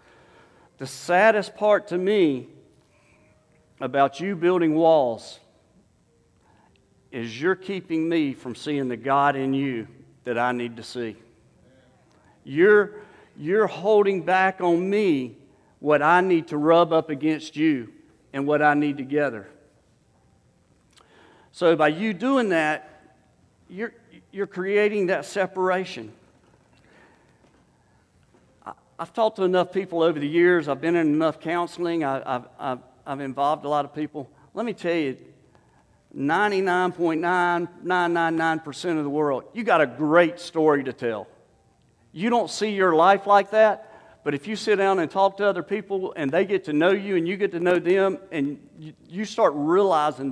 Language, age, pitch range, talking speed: English, 50-69, 145-195 Hz, 145 wpm